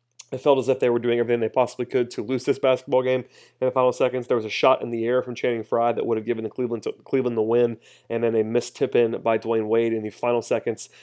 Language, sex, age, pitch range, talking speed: English, male, 30-49, 115-130 Hz, 285 wpm